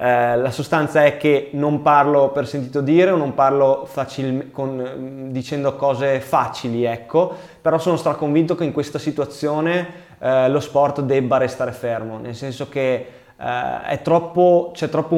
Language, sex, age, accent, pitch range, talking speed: Italian, male, 20-39, native, 130-150 Hz, 160 wpm